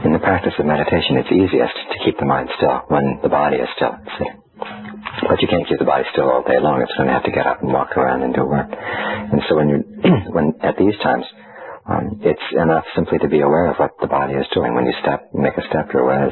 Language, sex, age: Thai, male, 40-59